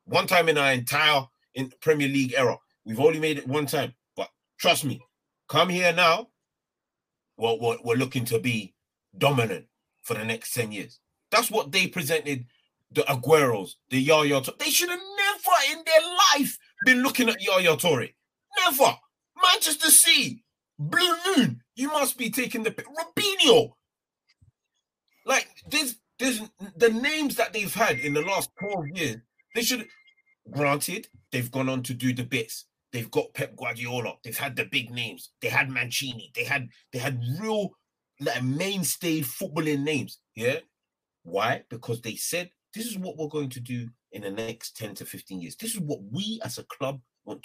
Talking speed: 170 wpm